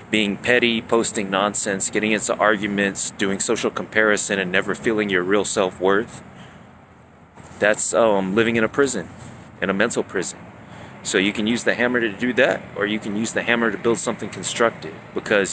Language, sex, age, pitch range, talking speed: English, male, 30-49, 95-115 Hz, 180 wpm